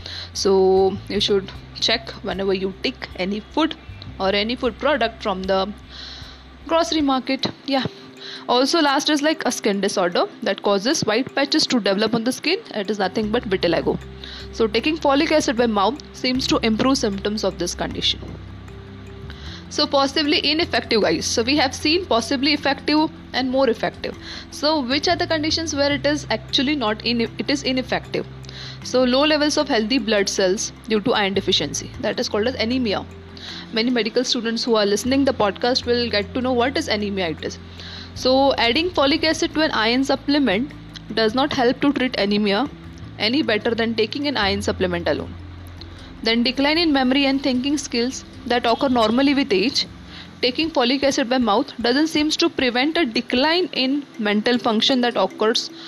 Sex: female